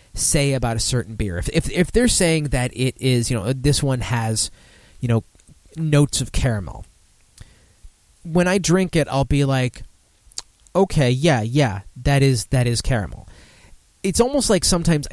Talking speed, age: 165 wpm, 30-49